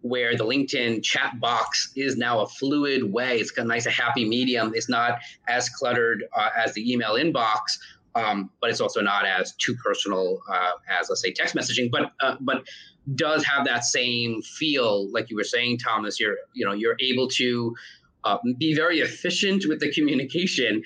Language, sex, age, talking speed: English, male, 30-49, 190 wpm